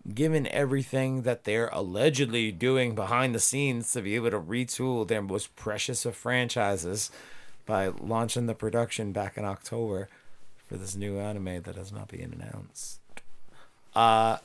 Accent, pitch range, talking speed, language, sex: American, 95-125 Hz, 150 wpm, English, male